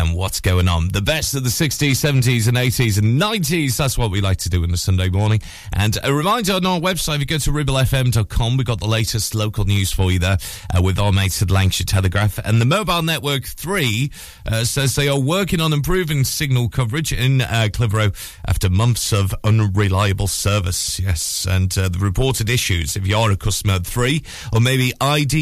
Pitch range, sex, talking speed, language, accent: 100-135 Hz, male, 210 wpm, English, British